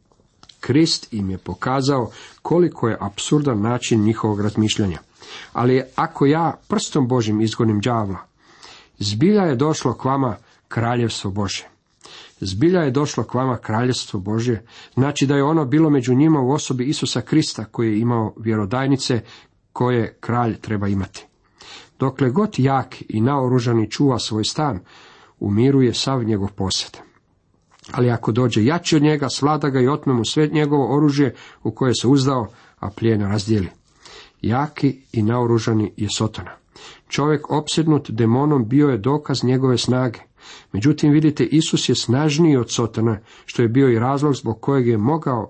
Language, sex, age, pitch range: Croatian, male, 50-69, 110-145 Hz